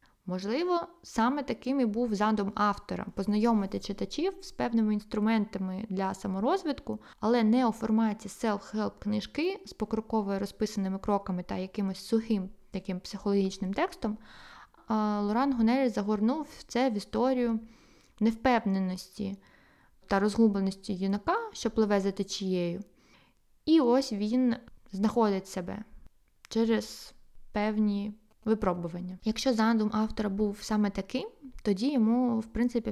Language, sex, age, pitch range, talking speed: Ukrainian, female, 20-39, 205-235 Hz, 115 wpm